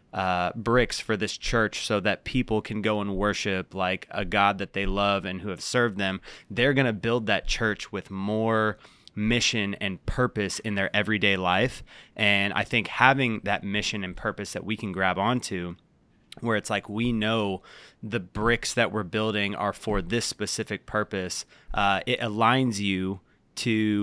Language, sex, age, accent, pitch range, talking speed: English, male, 20-39, American, 95-110 Hz, 175 wpm